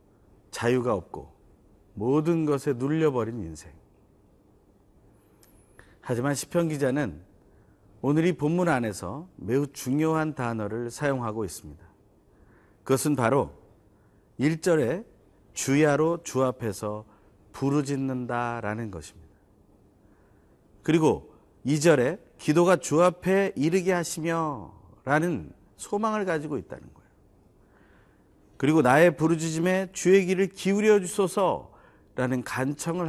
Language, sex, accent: Korean, male, native